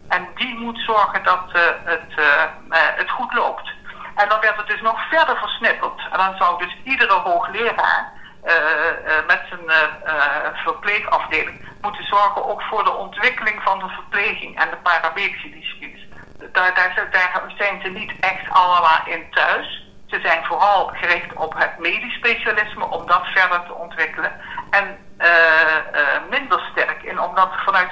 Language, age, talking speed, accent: Dutch, 60-79, 165 wpm, Dutch